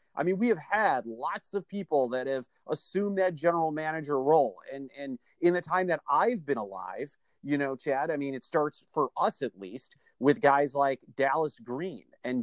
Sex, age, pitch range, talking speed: male, 40-59, 135-185 Hz, 200 wpm